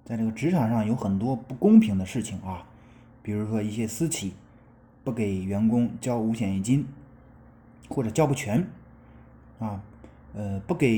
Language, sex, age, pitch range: Chinese, male, 20-39, 105-120 Hz